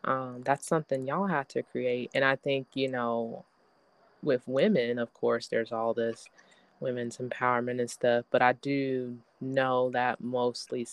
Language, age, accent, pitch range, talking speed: English, 20-39, American, 120-135 Hz, 160 wpm